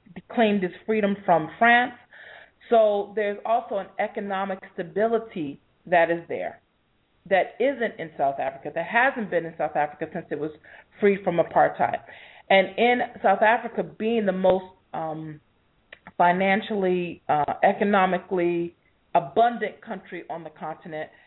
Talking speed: 135 wpm